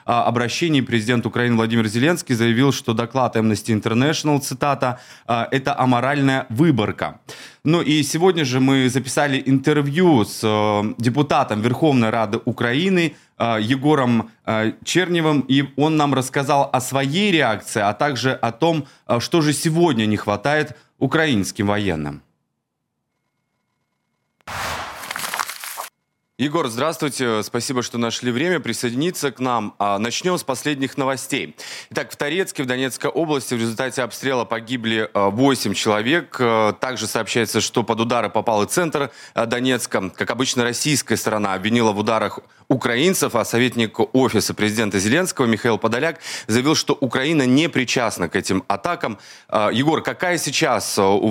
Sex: male